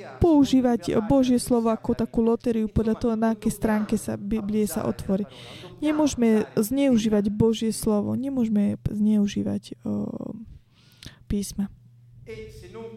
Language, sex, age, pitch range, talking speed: Slovak, female, 20-39, 200-240 Hz, 100 wpm